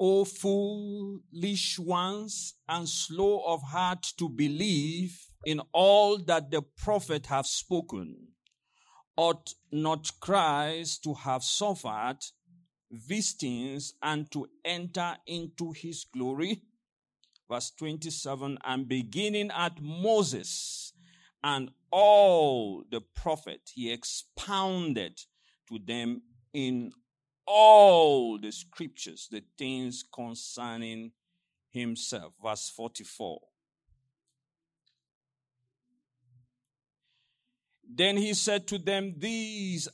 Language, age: English, 50-69